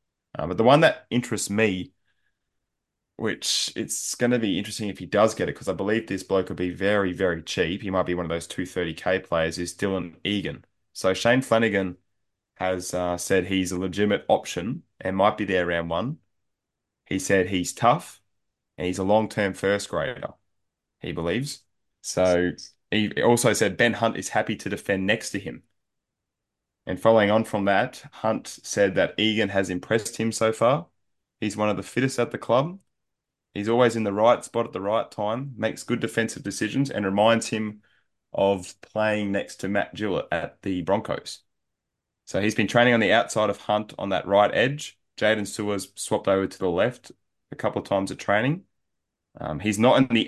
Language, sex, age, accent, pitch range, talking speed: English, male, 20-39, Australian, 95-110 Hz, 190 wpm